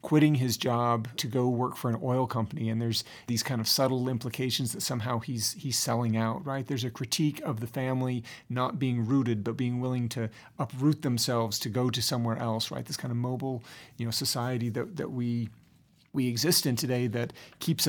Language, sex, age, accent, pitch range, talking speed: English, male, 40-59, American, 120-140 Hz, 205 wpm